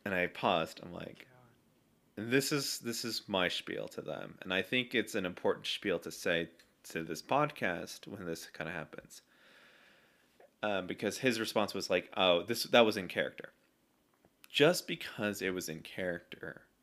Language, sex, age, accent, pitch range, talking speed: English, male, 30-49, American, 95-120 Hz, 170 wpm